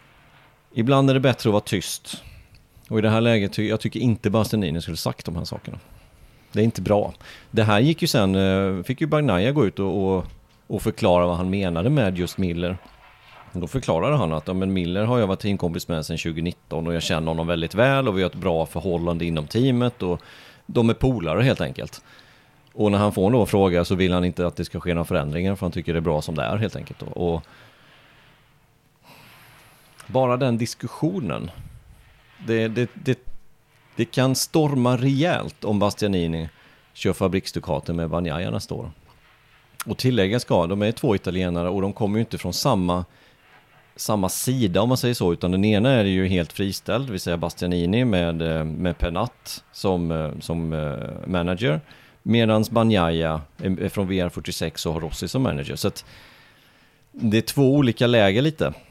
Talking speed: 185 wpm